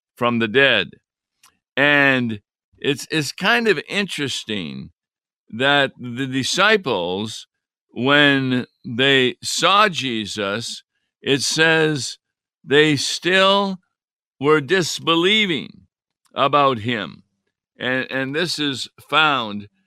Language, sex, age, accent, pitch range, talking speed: English, male, 60-79, American, 130-160 Hz, 90 wpm